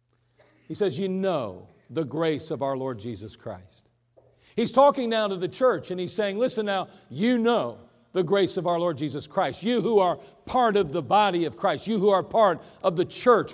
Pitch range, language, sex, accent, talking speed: 150-225 Hz, English, male, American, 210 wpm